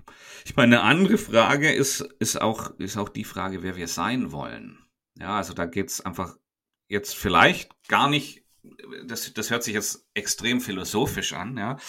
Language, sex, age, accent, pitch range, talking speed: German, male, 40-59, German, 95-110 Hz, 175 wpm